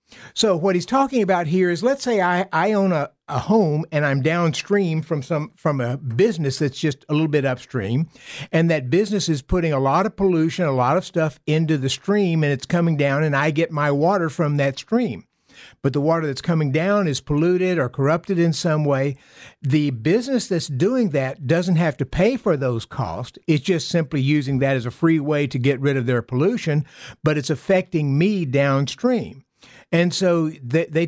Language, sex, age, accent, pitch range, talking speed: English, male, 50-69, American, 140-185 Hz, 205 wpm